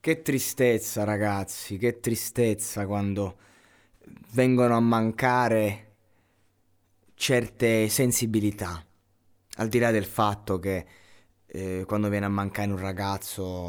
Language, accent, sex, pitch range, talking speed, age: Italian, native, male, 90-110 Hz, 105 wpm, 20-39